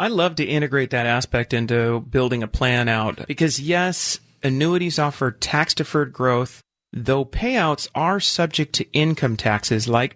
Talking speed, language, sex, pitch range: 150 wpm, English, male, 120-160 Hz